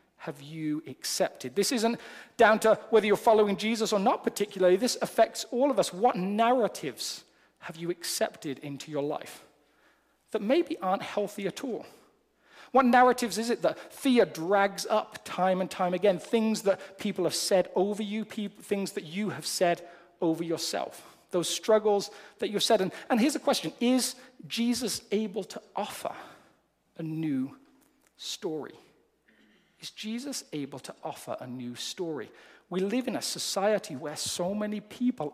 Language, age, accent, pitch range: English, 40-59, British, 175-235 Hz